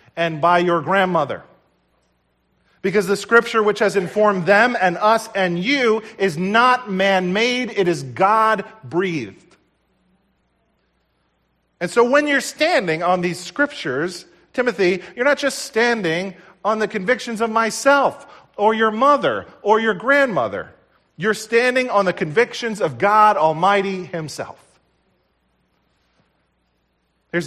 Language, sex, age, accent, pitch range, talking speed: English, male, 40-59, American, 155-215 Hz, 125 wpm